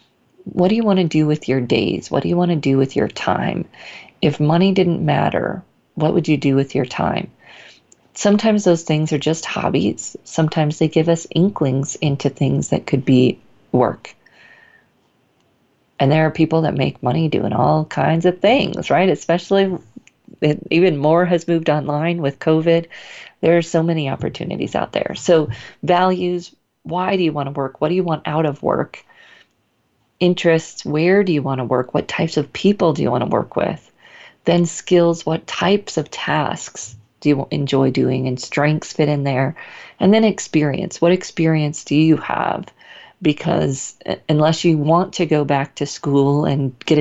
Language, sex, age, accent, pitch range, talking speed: English, female, 40-59, American, 145-175 Hz, 180 wpm